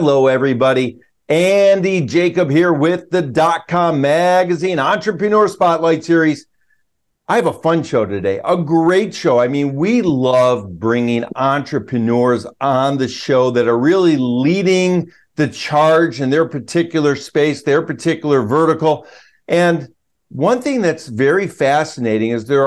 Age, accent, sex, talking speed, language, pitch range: 50-69, American, male, 135 wpm, English, 130-170 Hz